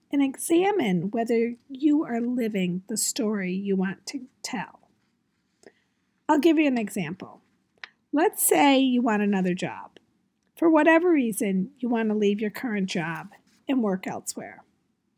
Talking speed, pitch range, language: 140 wpm, 210-285 Hz, English